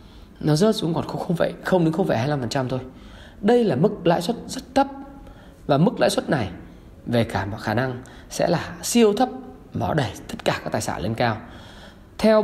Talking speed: 205 wpm